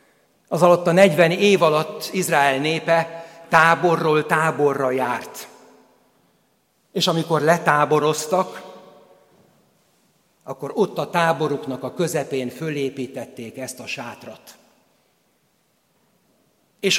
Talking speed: 90 wpm